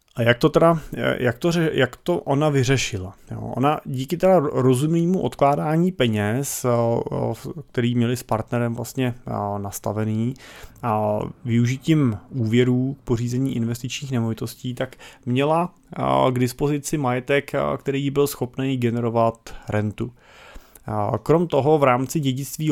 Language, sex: Czech, male